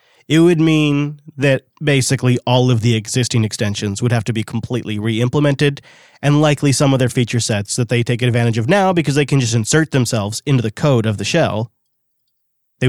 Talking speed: 195 wpm